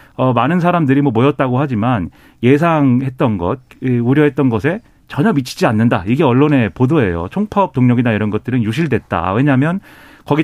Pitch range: 120-170 Hz